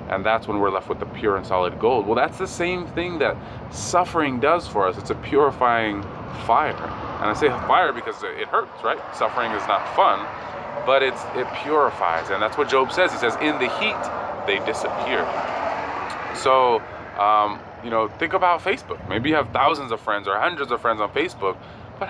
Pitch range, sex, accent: 105-140 Hz, male, American